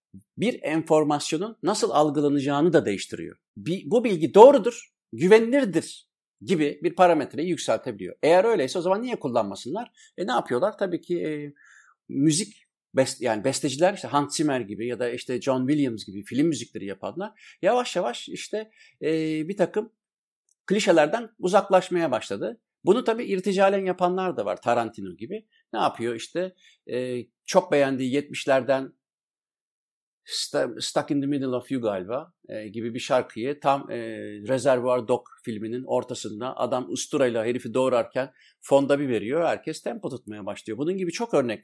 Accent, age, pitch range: native, 50-69, 125-175 Hz